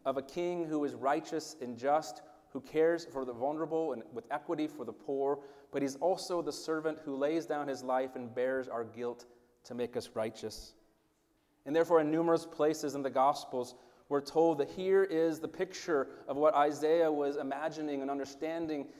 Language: English